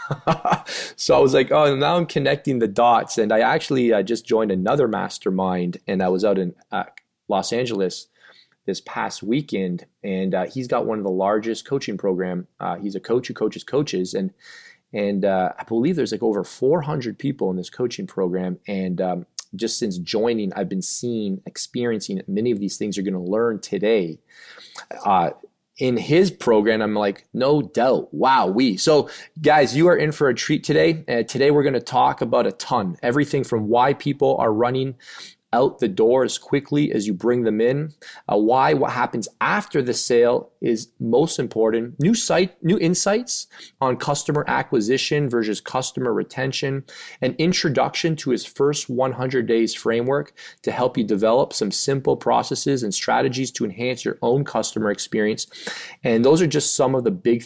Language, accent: English, American